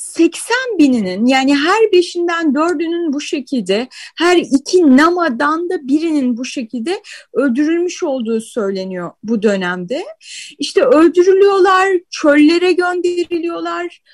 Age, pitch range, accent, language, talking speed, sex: 30-49, 270-355 Hz, native, Turkish, 100 wpm, female